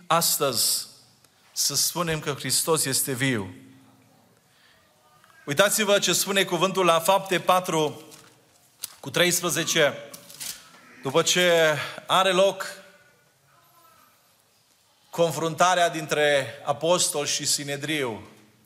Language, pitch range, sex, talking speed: Romanian, 145-185 Hz, male, 80 wpm